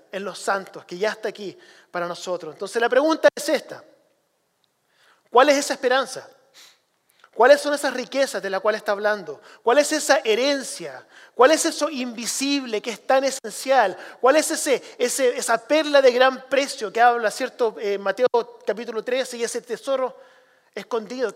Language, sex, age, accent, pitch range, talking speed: English, male, 30-49, Argentinian, 210-280 Hz, 165 wpm